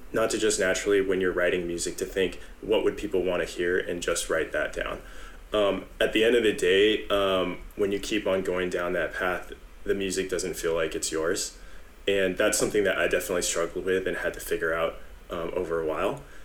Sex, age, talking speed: male, 20-39, 225 wpm